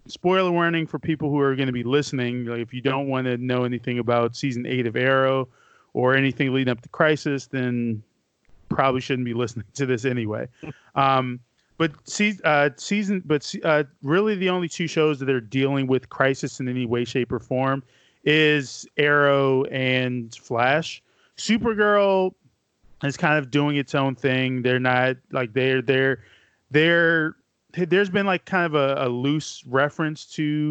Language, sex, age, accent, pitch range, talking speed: English, male, 30-49, American, 125-150 Hz, 175 wpm